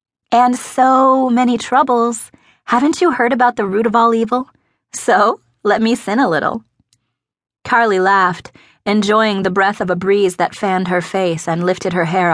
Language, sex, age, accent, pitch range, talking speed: English, female, 30-49, American, 170-220 Hz, 170 wpm